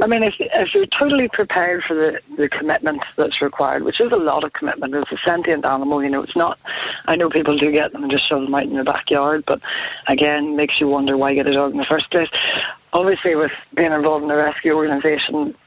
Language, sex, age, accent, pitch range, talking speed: English, female, 20-39, Irish, 145-160 Hz, 240 wpm